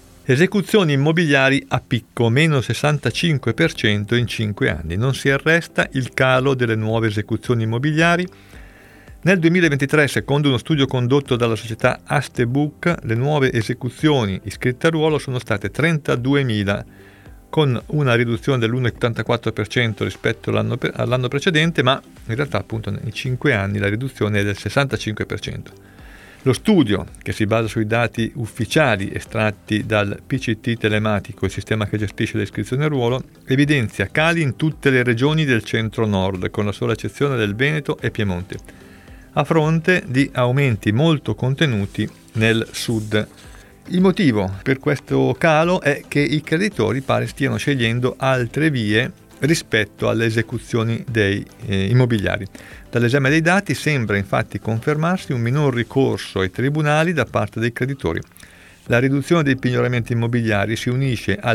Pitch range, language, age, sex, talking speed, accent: 110-140 Hz, Italian, 50-69, male, 135 wpm, native